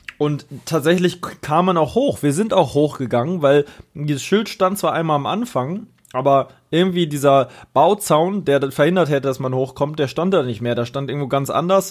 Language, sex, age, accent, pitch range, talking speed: German, male, 20-39, German, 130-160 Hz, 190 wpm